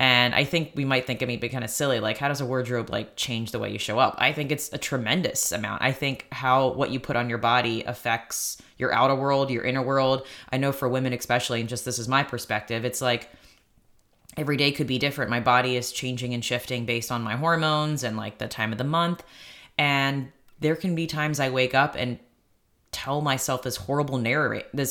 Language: English